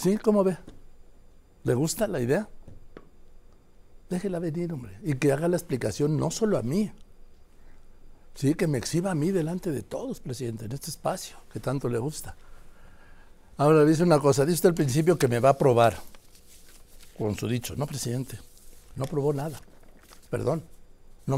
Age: 60-79